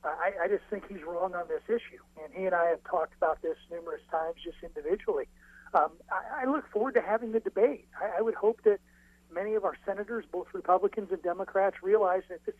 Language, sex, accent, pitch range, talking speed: English, male, American, 170-230 Hz, 220 wpm